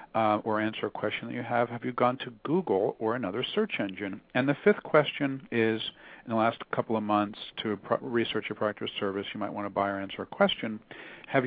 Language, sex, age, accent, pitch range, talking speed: English, male, 50-69, American, 105-145 Hz, 230 wpm